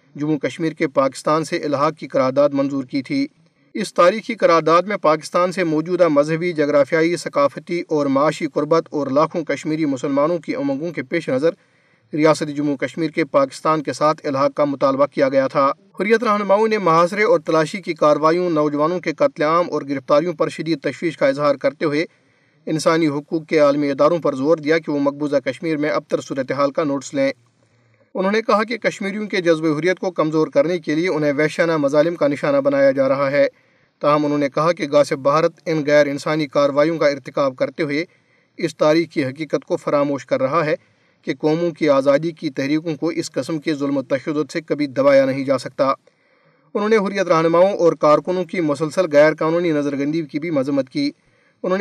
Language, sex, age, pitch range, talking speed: Urdu, male, 40-59, 150-205 Hz, 195 wpm